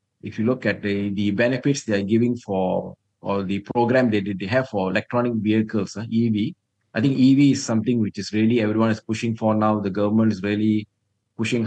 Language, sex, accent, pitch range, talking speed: English, male, Indian, 105-120 Hz, 205 wpm